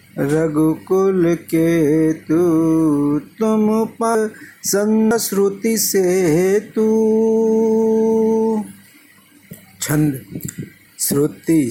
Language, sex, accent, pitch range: Hindi, male, native, 160-205 Hz